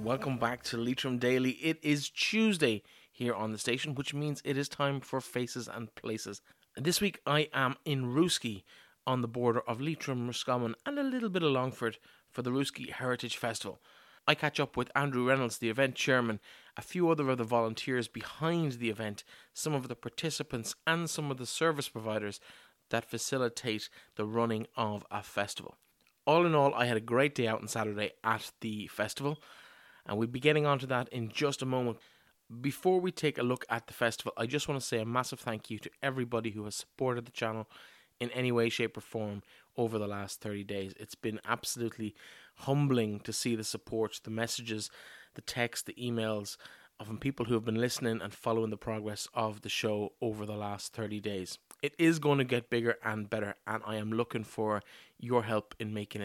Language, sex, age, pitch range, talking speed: English, male, 20-39, 110-135 Hz, 200 wpm